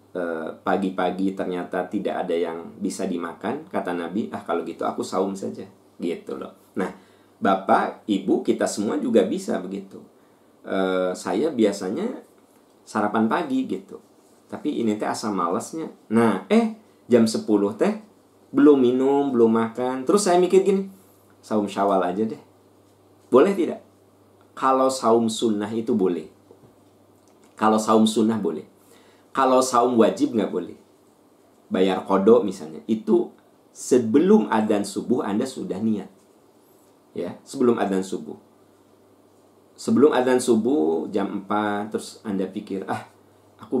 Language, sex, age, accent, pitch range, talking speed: Indonesian, male, 40-59, native, 95-125 Hz, 125 wpm